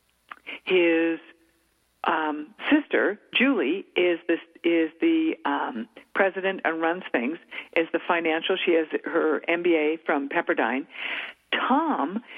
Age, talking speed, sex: 50-69, 110 wpm, female